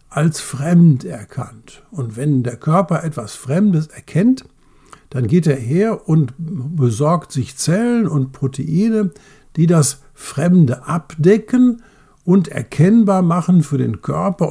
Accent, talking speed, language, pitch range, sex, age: German, 125 wpm, German, 135-185 Hz, male, 60-79